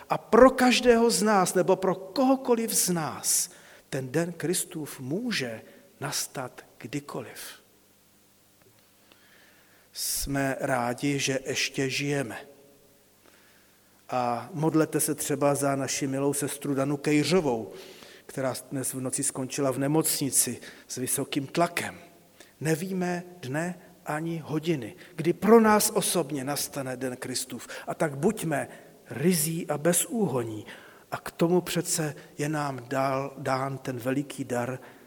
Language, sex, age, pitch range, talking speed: Czech, male, 40-59, 125-180 Hz, 120 wpm